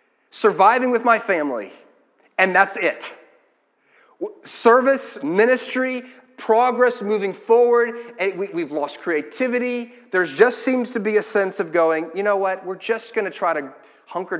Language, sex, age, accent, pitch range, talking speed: English, male, 40-59, American, 160-230 Hz, 150 wpm